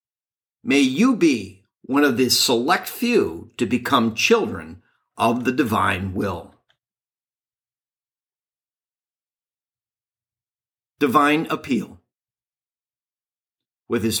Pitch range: 110-150 Hz